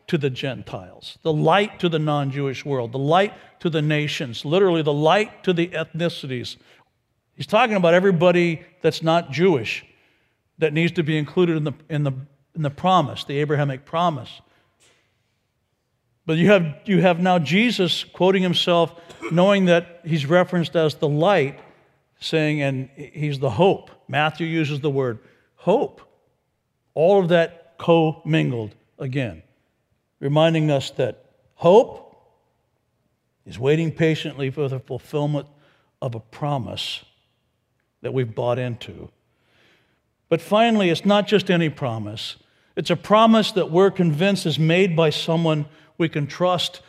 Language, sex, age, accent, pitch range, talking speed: English, male, 60-79, American, 140-180 Hz, 140 wpm